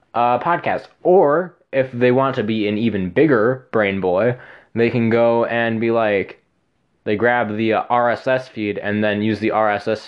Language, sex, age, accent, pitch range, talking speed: English, male, 20-39, American, 105-125 Hz, 175 wpm